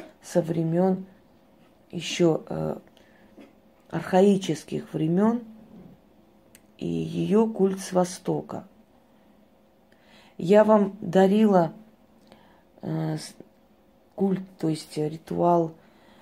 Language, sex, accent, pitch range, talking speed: Russian, female, native, 160-185 Hz, 75 wpm